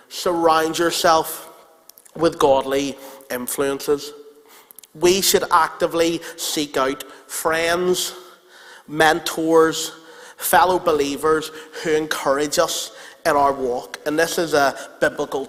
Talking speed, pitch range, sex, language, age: 95 wpm, 150-205 Hz, male, English, 30-49